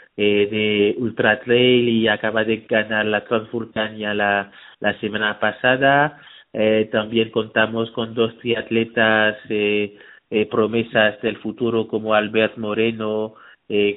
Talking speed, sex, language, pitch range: 120 wpm, male, Spanish, 105-115 Hz